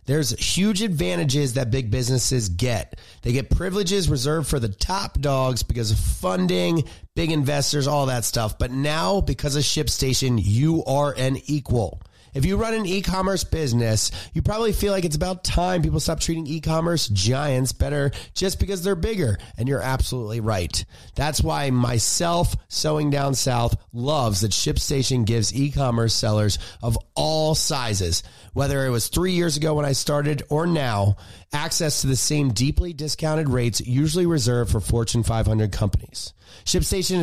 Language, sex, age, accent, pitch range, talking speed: English, male, 30-49, American, 115-155 Hz, 160 wpm